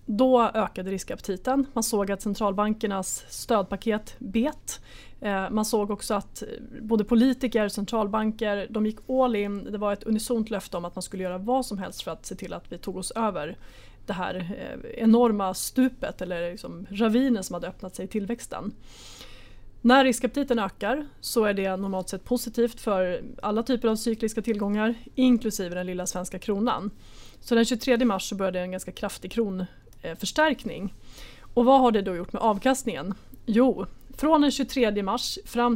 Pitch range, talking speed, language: 200-240 Hz, 170 wpm, Swedish